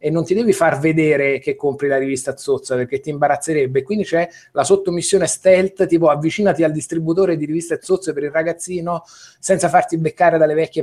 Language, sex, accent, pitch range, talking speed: Italian, male, native, 140-170 Hz, 190 wpm